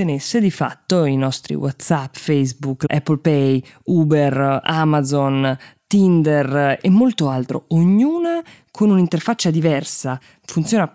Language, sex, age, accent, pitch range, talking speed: Italian, female, 20-39, native, 135-165 Hz, 105 wpm